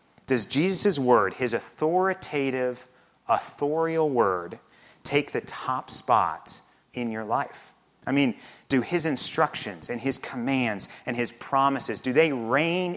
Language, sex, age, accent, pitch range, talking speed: English, male, 40-59, American, 110-135 Hz, 130 wpm